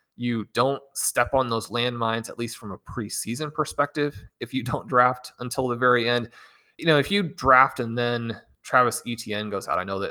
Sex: male